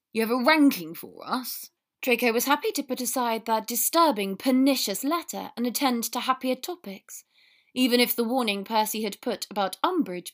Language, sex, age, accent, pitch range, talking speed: English, female, 30-49, British, 205-255 Hz, 175 wpm